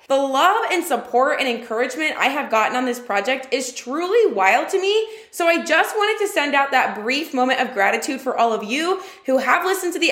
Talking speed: 225 wpm